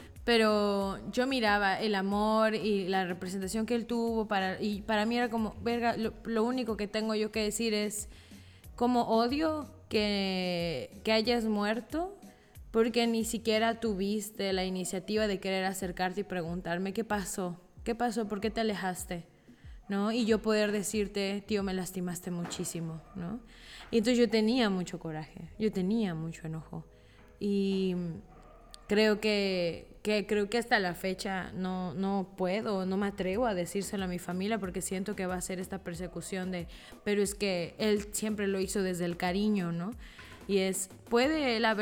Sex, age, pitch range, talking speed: female, 20-39, 180-215 Hz, 165 wpm